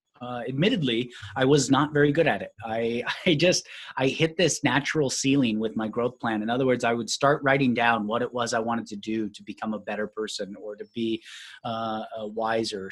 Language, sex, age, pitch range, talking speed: English, male, 30-49, 110-140 Hz, 220 wpm